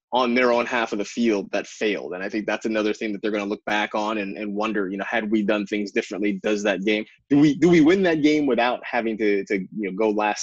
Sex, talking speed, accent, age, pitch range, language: male, 290 wpm, American, 20-39, 105-130 Hz, English